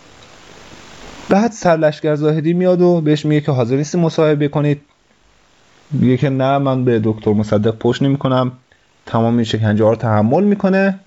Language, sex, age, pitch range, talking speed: Persian, male, 30-49, 105-145 Hz, 150 wpm